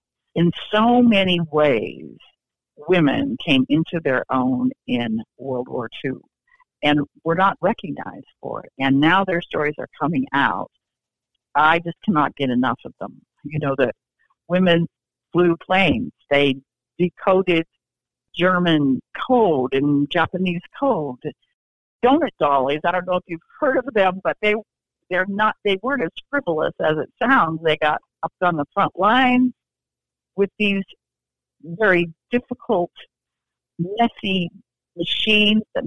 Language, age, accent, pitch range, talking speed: English, 60-79, American, 145-195 Hz, 135 wpm